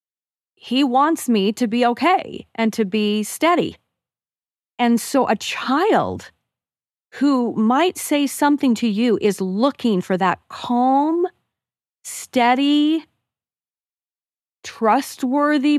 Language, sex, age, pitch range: English, female, 40-59, 200-245 Hz